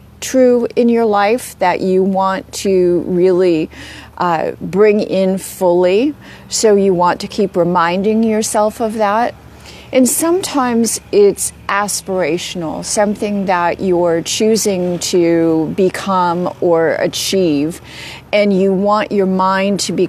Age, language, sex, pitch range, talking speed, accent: 40-59, English, female, 175-215 Hz, 120 wpm, American